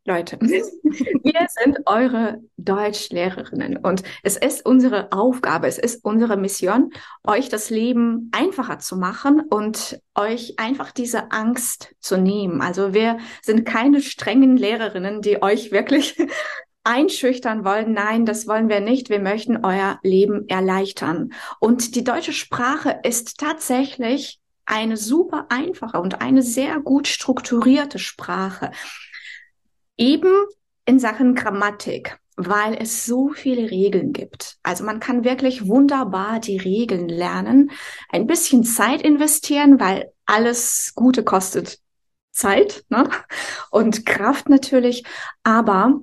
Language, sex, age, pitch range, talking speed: German, female, 20-39, 210-270 Hz, 125 wpm